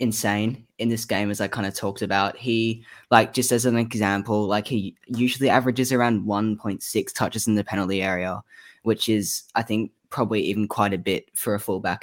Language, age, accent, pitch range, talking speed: English, 10-29, Australian, 100-115 Hz, 195 wpm